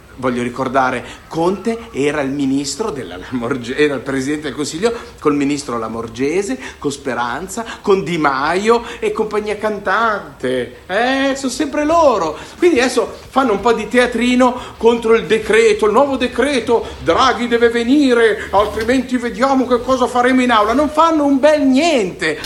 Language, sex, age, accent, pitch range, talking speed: Italian, male, 50-69, native, 190-265 Hz, 145 wpm